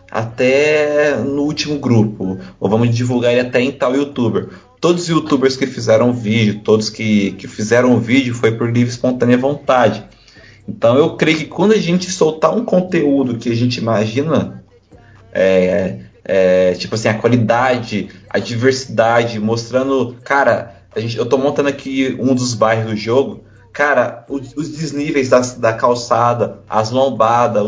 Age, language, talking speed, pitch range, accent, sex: 20-39, Portuguese, 160 wpm, 115-155 Hz, Brazilian, male